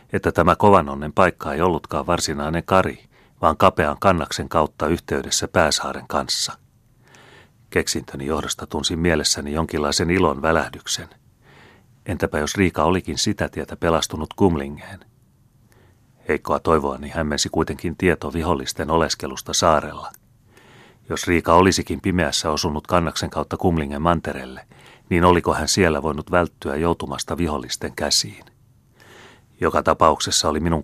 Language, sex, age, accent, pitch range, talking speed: Finnish, male, 30-49, native, 75-90 Hz, 120 wpm